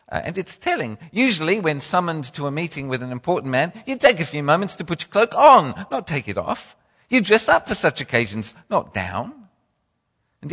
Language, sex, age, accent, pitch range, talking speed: English, male, 50-69, British, 110-165 Hz, 210 wpm